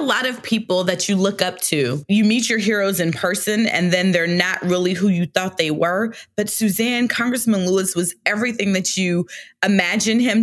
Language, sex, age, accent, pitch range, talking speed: English, female, 20-39, American, 170-205 Hz, 195 wpm